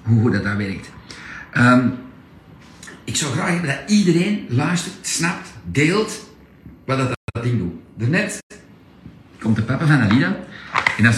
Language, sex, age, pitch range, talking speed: Dutch, male, 50-69, 120-155 Hz, 150 wpm